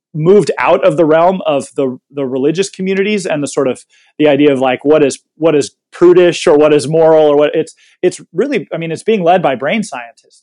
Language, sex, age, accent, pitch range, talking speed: English, male, 30-49, American, 140-165 Hz, 230 wpm